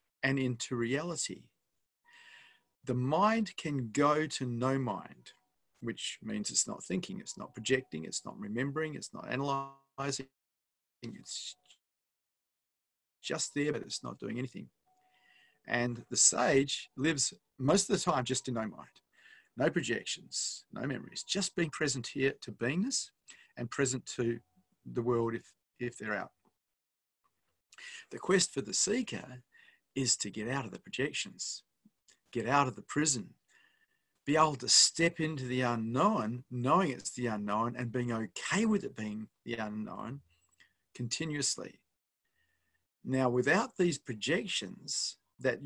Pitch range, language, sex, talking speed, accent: 120-155 Hz, English, male, 140 wpm, Australian